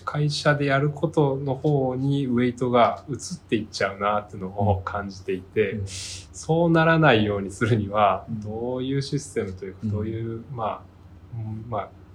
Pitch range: 95-125 Hz